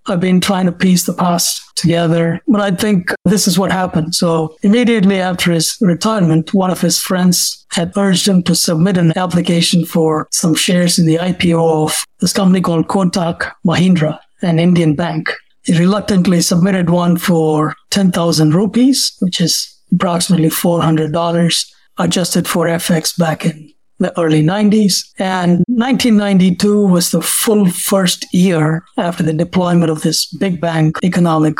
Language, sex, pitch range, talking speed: English, male, 165-190 Hz, 150 wpm